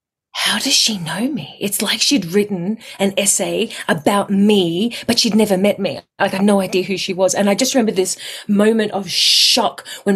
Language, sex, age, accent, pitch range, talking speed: English, female, 30-49, Australian, 180-215 Hz, 205 wpm